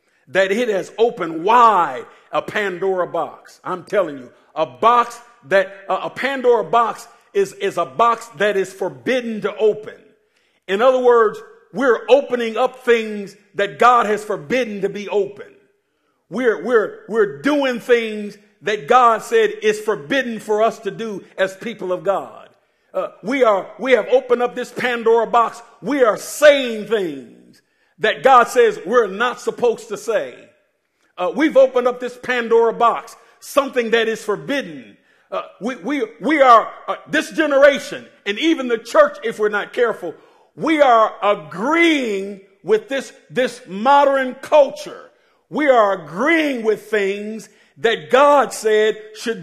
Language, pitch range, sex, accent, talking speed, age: English, 205-270 Hz, male, American, 150 wpm, 50-69